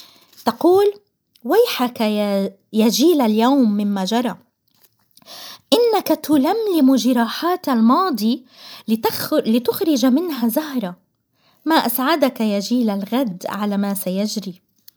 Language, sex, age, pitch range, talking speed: Arabic, female, 20-39, 215-300 Hz, 90 wpm